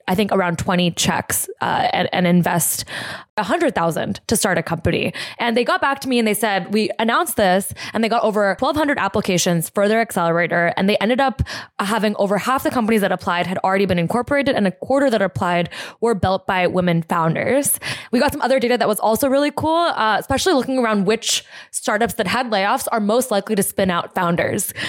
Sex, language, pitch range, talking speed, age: female, English, 180-240 Hz, 205 wpm, 20-39